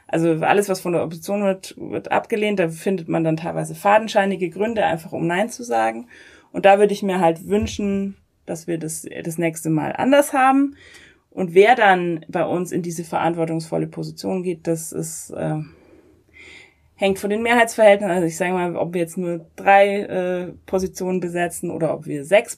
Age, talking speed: 30-49, 185 wpm